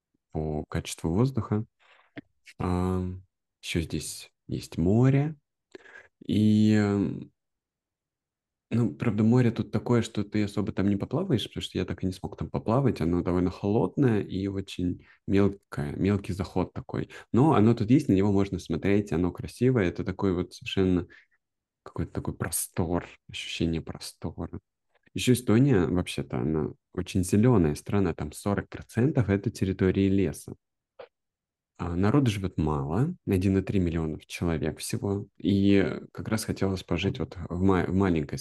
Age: 20-39